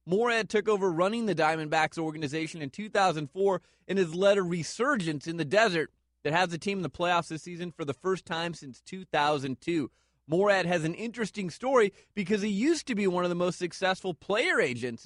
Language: English